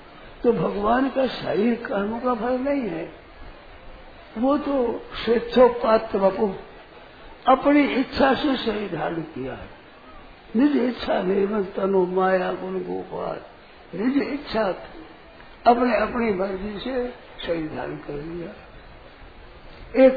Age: 60-79